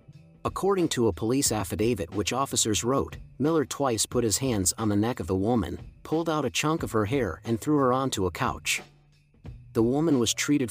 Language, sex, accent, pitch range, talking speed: English, male, American, 100-130 Hz, 200 wpm